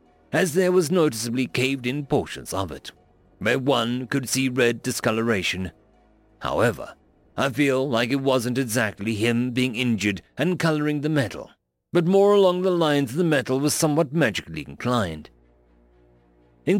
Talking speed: 145 wpm